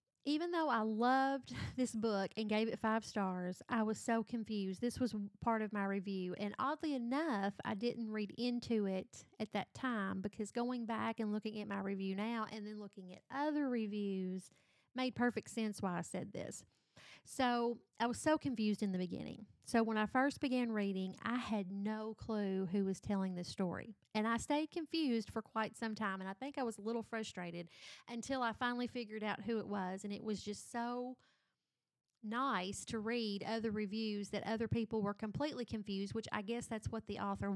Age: 30-49